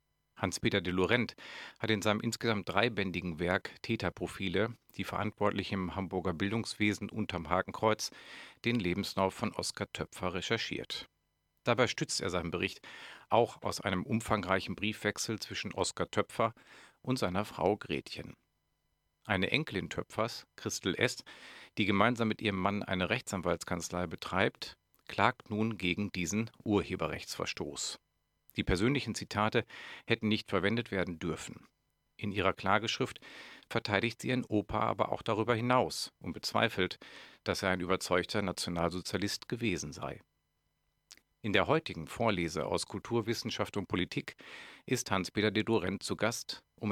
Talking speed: 130 wpm